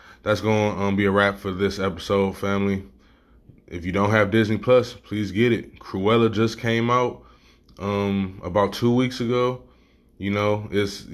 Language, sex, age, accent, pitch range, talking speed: English, male, 20-39, American, 85-105 Hz, 160 wpm